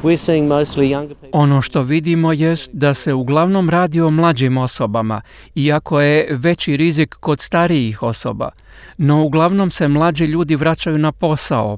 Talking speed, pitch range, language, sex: 135 wpm, 130-160 Hz, Croatian, male